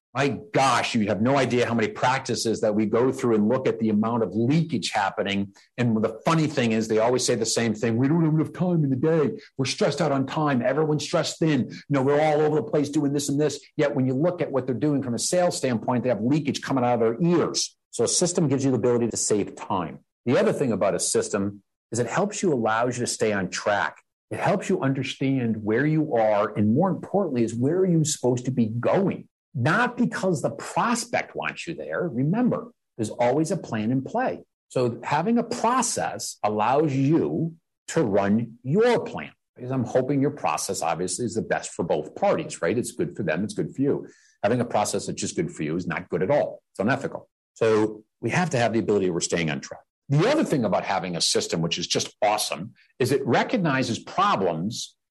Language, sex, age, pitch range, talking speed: English, male, 50-69, 115-155 Hz, 225 wpm